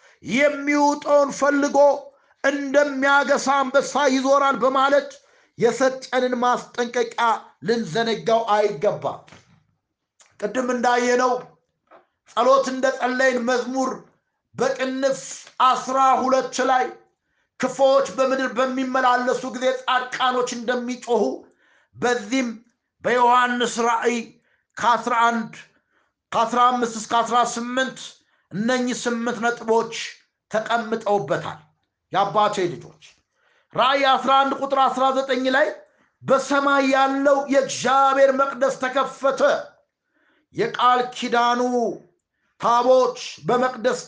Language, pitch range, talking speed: Amharic, 245-275 Hz, 70 wpm